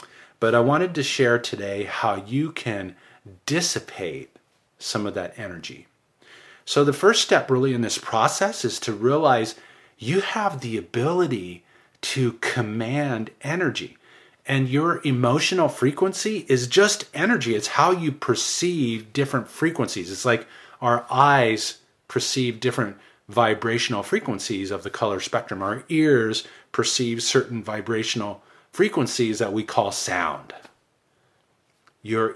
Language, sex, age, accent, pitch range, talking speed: English, male, 40-59, American, 110-140 Hz, 130 wpm